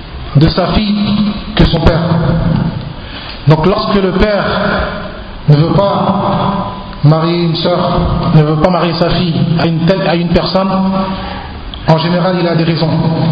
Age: 50-69